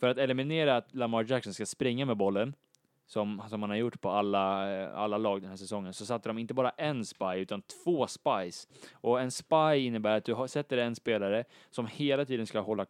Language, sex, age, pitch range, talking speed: Swedish, male, 20-39, 100-125 Hz, 210 wpm